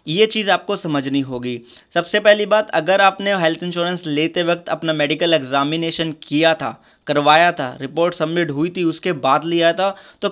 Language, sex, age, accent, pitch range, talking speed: Hindi, male, 20-39, native, 155-190 Hz, 175 wpm